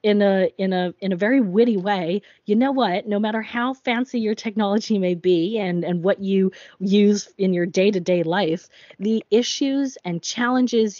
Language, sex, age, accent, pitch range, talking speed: English, female, 20-39, American, 185-235 Hz, 165 wpm